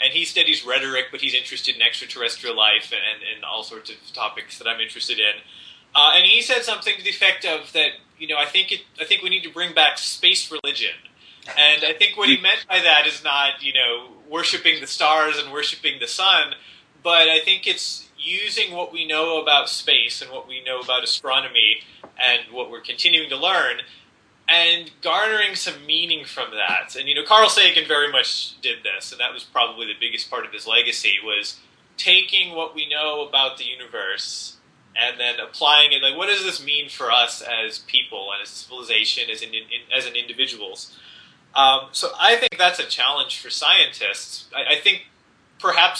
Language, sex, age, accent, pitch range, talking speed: English, male, 30-49, American, 135-180 Hz, 195 wpm